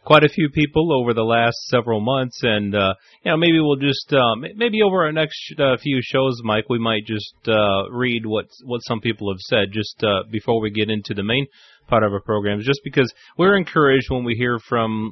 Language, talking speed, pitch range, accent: English, 220 wpm, 110-145 Hz, American